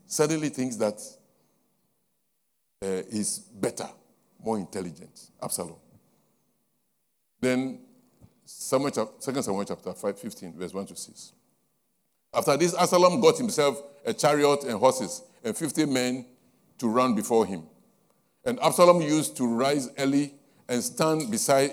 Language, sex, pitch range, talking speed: English, male, 120-175 Hz, 120 wpm